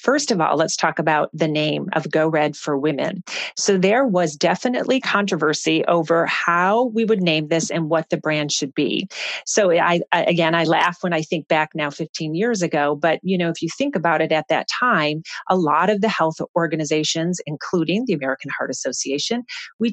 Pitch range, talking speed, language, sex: 160-205 Hz, 200 wpm, English, female